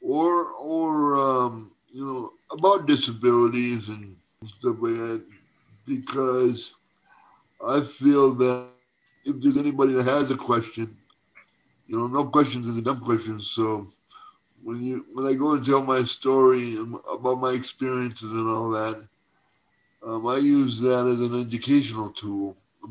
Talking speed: 145 wpm